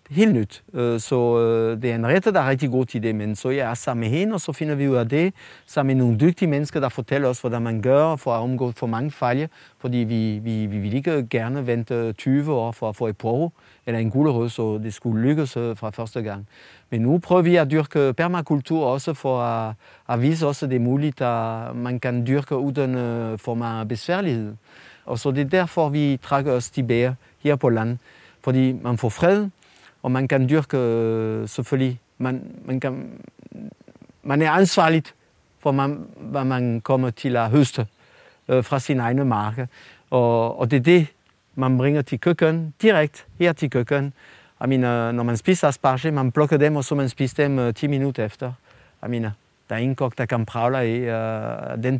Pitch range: 115-145 Hz